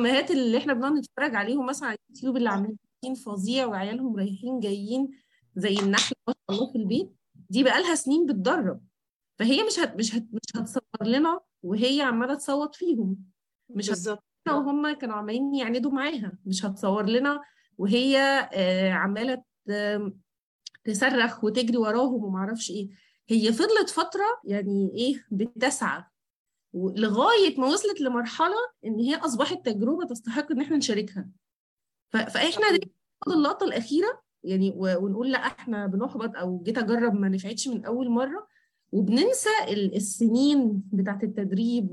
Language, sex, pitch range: Arabic, female, 205-270 Hz